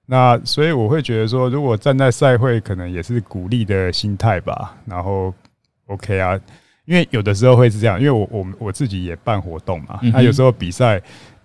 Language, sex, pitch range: Chinese, male, 95-125 Hz